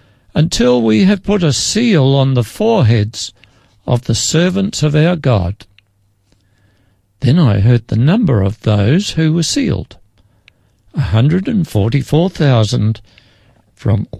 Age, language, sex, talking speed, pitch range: 60-79, English, male, 120 wpm, 100-145 Hz